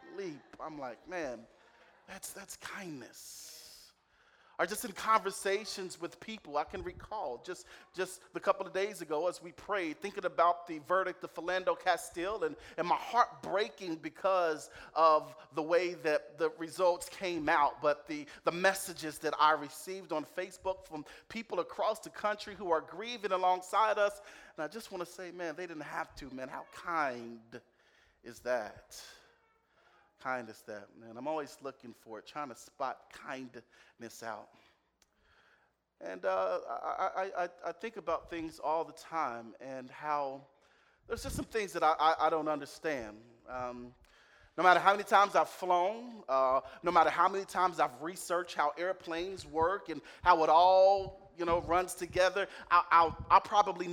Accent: American